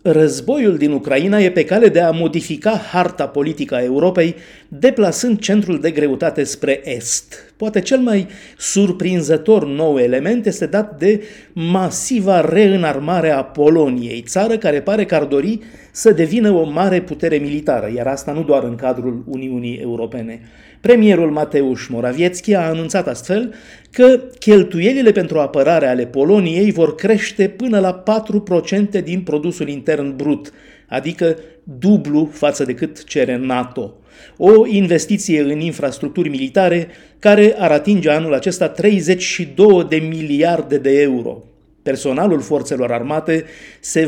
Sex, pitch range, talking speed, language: male, 145-200 Hz, 135 wpm, Romanian